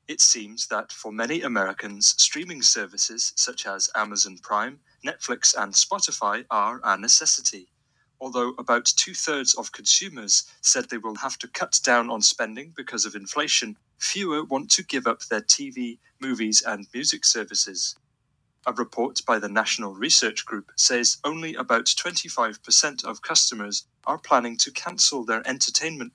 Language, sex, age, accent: Japanese, male, 30-49, British